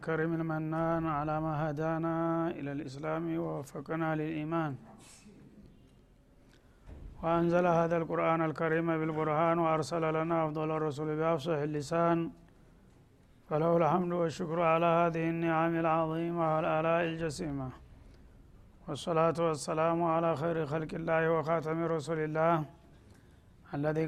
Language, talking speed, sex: Amharic, 95 wpm, male